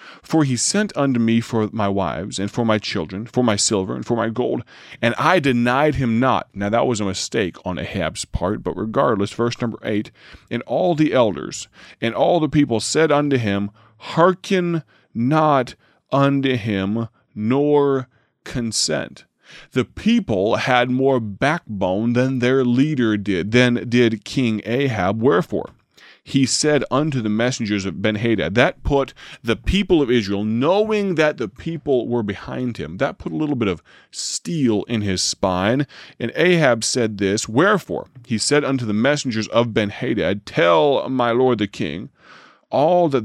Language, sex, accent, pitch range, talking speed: English, male, American, 105-135 Hz, 160 wpm